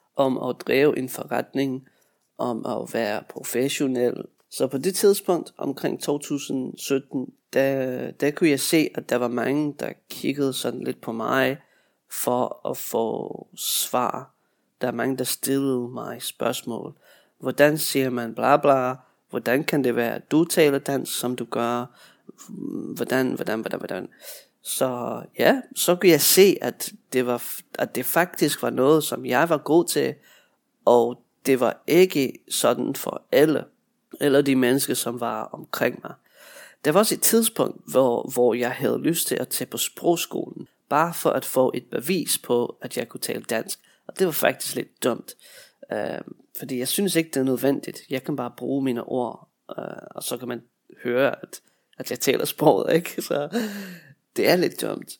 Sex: male